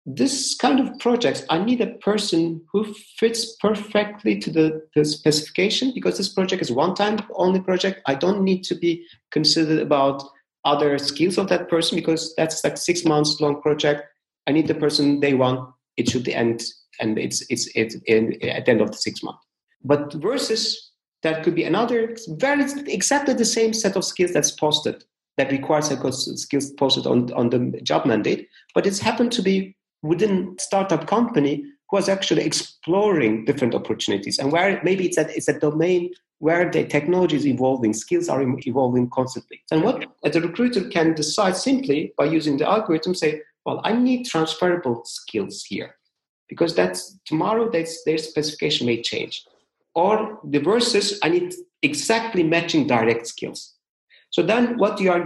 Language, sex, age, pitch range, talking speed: English, male, 50-69, 145-205 Hz, 175 wpm